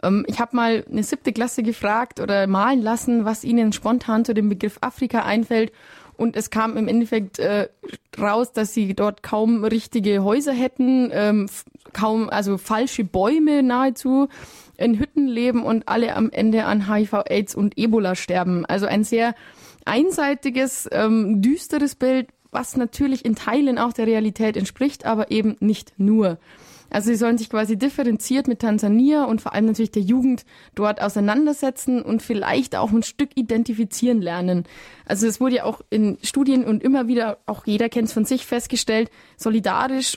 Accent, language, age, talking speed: German, German, 20-39, 165 wpm